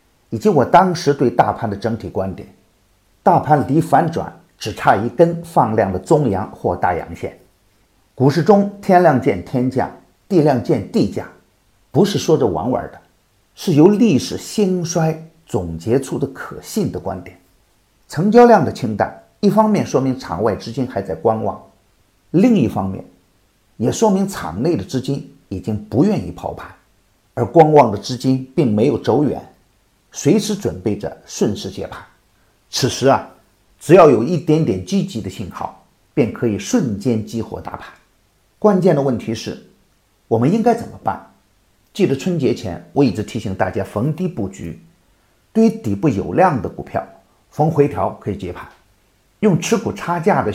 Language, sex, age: Chinese, male, 50-69